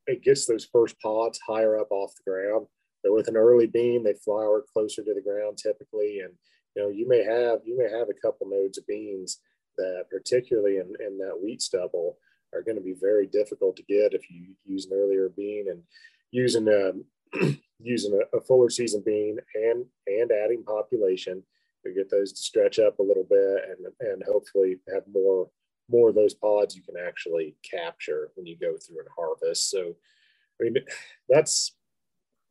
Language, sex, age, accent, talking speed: English, male, 30-49, American, 185 wpm